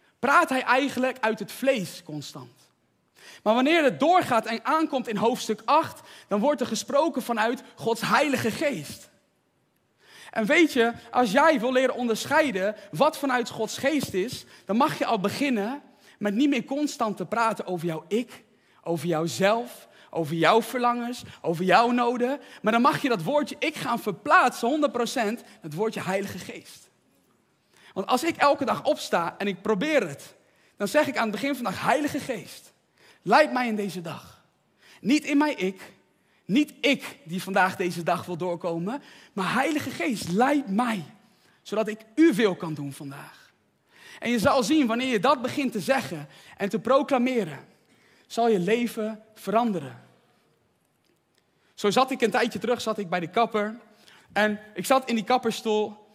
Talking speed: 165 wpm